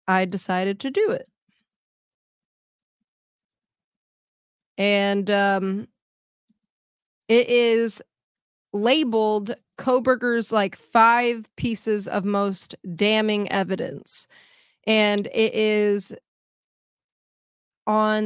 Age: 20-39